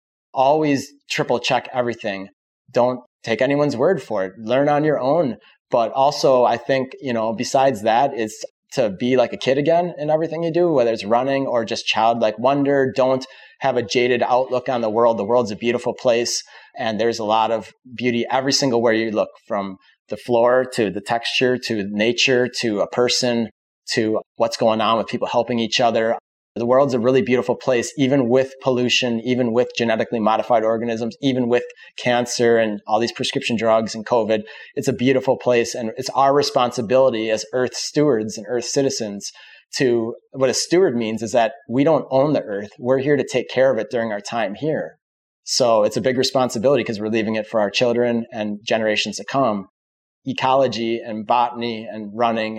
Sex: male